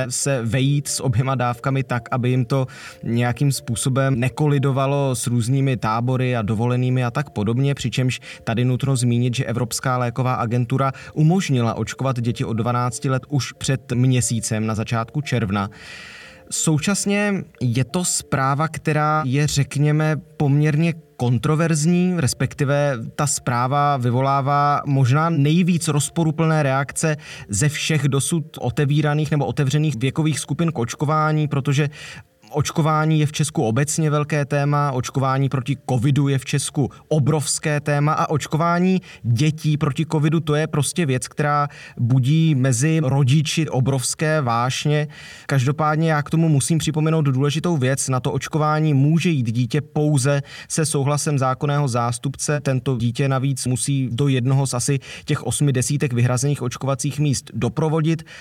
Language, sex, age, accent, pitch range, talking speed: Czech, male, 20-39, native, 125-150 Hz, 135 wpm